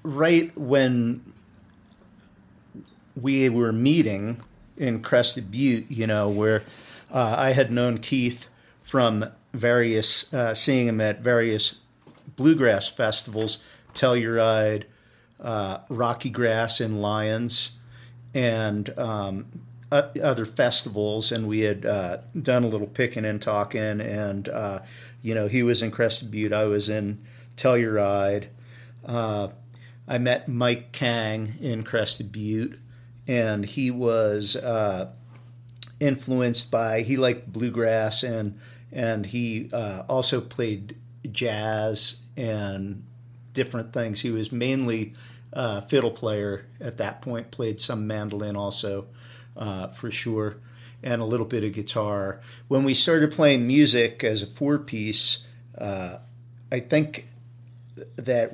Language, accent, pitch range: English, American, 110-125 Hz